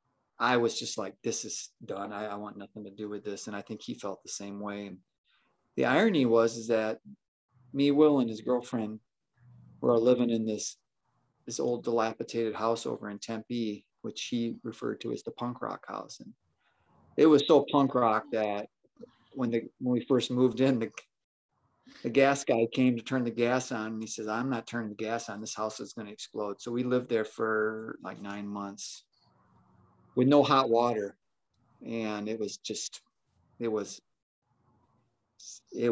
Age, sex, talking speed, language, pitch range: 30-49, male, 185 wpm, English, 110-130 Hz